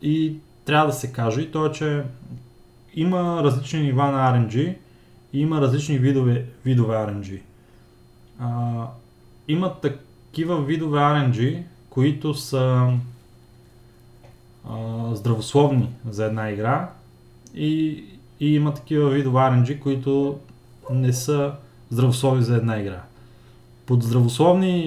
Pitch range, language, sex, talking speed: 120-150 Hz, Bulgarian, male, 115 wpm